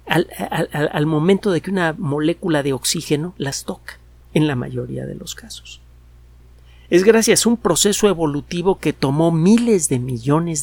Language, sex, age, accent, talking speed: Spanish, male, 50-69, Mexican, 165 wpm